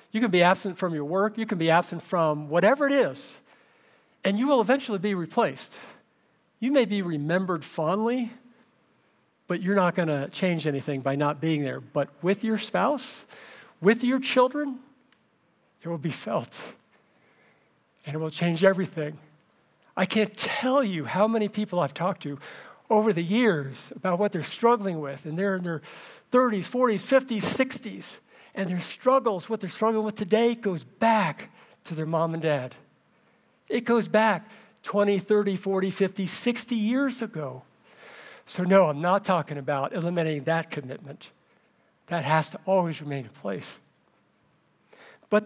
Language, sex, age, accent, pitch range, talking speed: English, male, 50-69, American, 160-225 Hz, 160 wpm